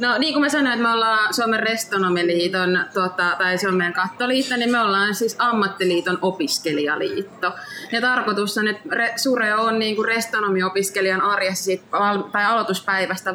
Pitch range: 180-220 Hz